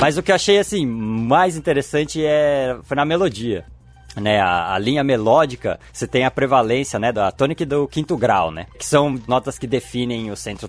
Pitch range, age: 110-150 Hz, 20-39